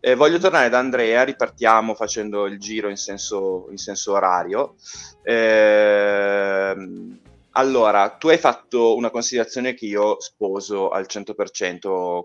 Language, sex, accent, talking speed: Italian, male, native, 125 wpm